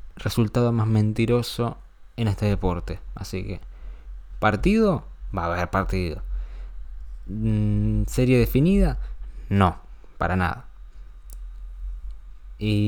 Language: Spanish